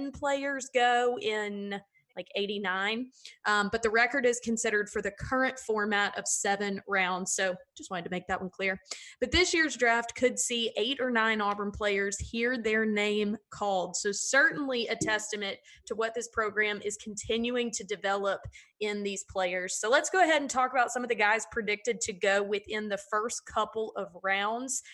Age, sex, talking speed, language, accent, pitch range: 20-39, female, 185 wpm, English, American, 200-245 Hz